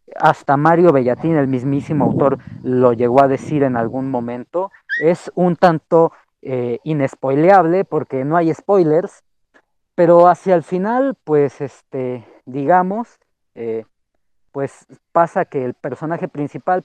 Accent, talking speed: Mexican, 125 wpm